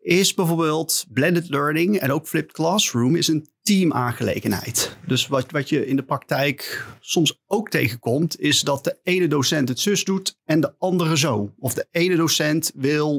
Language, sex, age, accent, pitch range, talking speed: Dutch, male, 40-59, Dutch, 135-180 Hz, 175 wpm